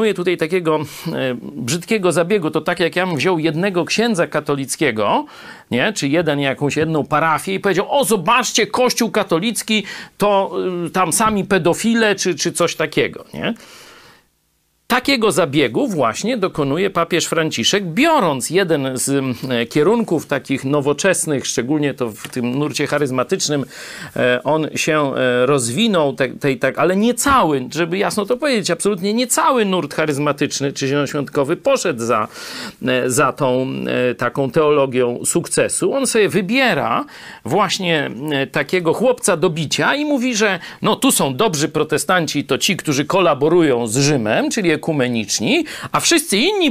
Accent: native